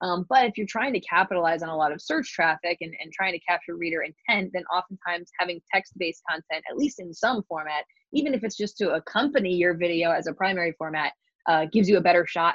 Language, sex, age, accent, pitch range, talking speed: English, female, 20-39, American, 170-200 Hz, 230 wpm